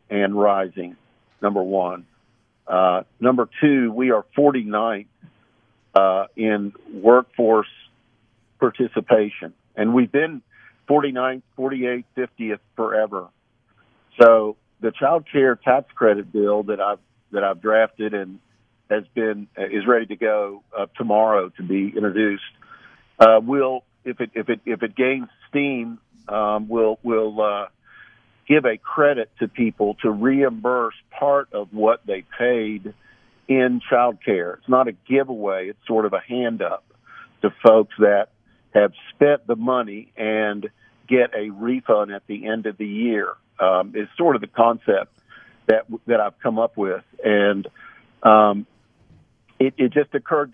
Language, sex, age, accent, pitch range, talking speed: English, male, 50-69, American, 105-125 Hz, 140 wpm